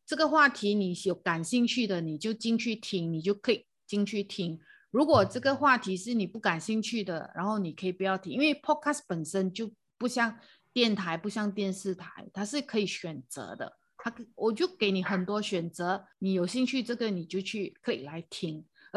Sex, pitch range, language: female, 185-235 Hz, Chinese